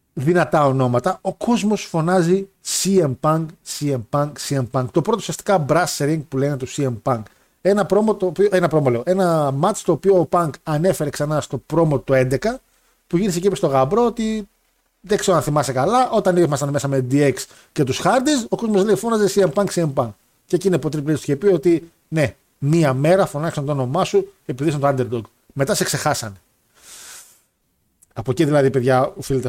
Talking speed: 180 wpm